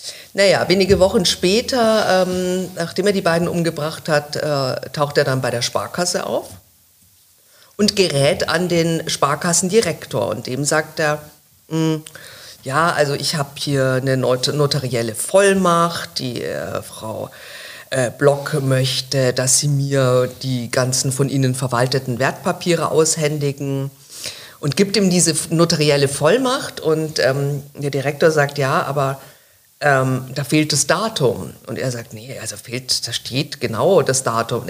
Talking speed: 140 wpm